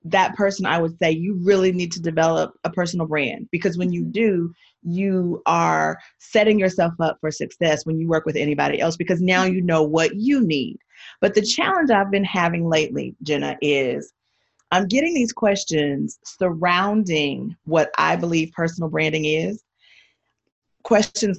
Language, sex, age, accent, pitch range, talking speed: English, female, 30-49, American, 175-235 Hz, 165 wpm